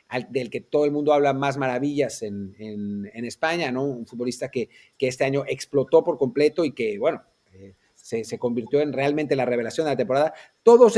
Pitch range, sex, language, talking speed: 135-195 Hz, male, Spanish, 200 wpm